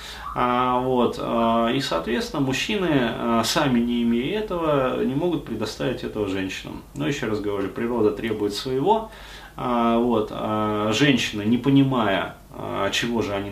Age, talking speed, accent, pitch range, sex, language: 20-39, 110 wpm, native, 105-135 Hz, male, Russian